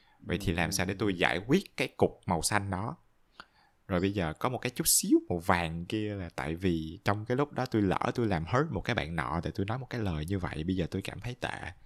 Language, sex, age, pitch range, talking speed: Vietnamese, male, 20-39, 90-125 Hz, 275 wpm